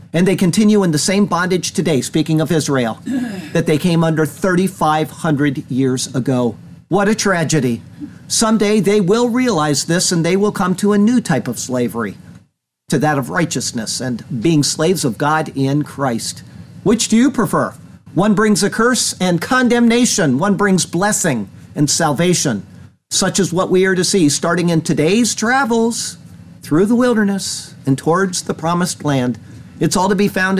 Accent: American